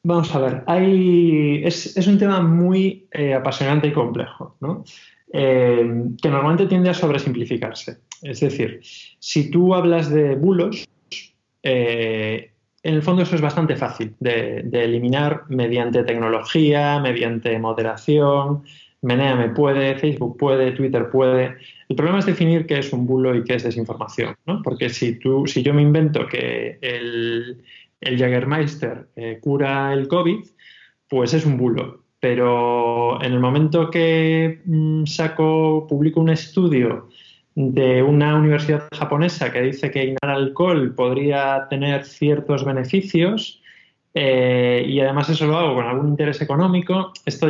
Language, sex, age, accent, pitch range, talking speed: Spanish, male, 20-39, Spanish, 125-160 Hz, 145 wpm